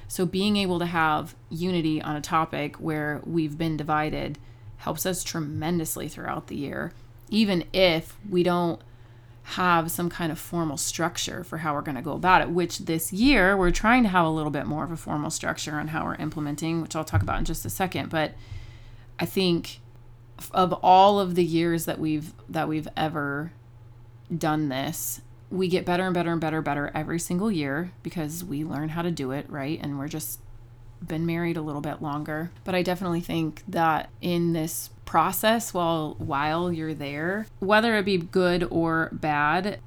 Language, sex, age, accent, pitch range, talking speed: English, female, 30-49, American, 140-175 Hz, 185 wpm